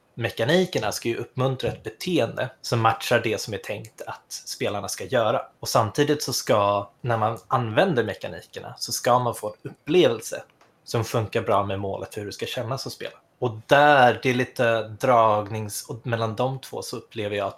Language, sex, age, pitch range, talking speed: Swedish, male, 20-39, 105-125 Hz, 190 wpm